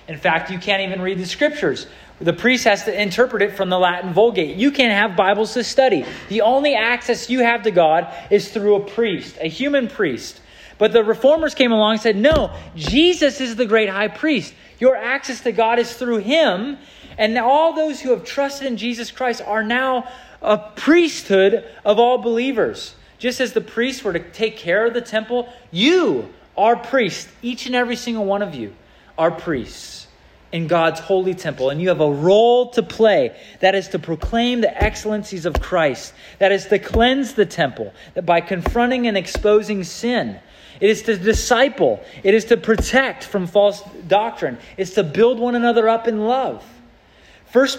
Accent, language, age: American, English, 30-49